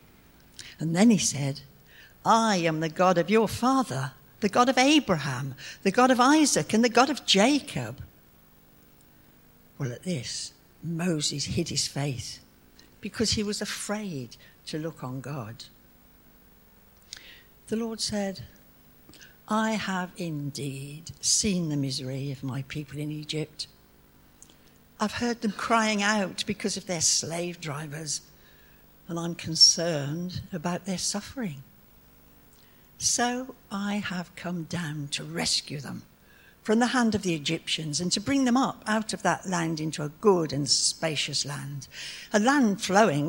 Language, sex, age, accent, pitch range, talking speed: English, female, 60-79, British, 145-210 Hz, 140 wpm